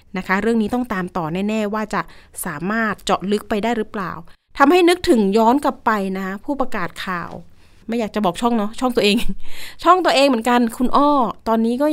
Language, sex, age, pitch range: Thai, female, 20-39, 205-245 Hz